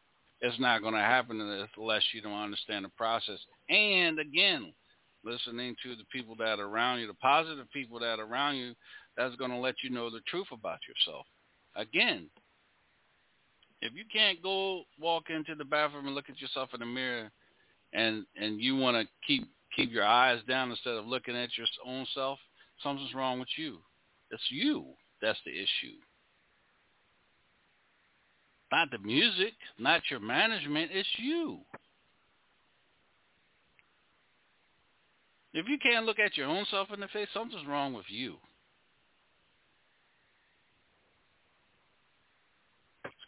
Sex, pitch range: male, 120-175 Hz